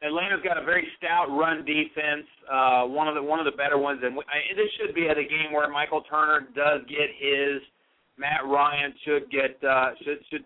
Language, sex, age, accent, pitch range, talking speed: English, male, 40-59, American, 145-205 Hz, 205 wpm